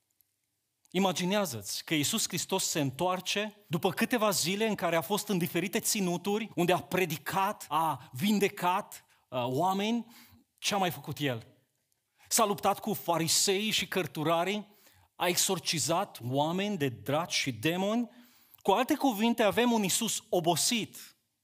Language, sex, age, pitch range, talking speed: Romanian, male, 30-49, 155-225 Hz, 135 wpm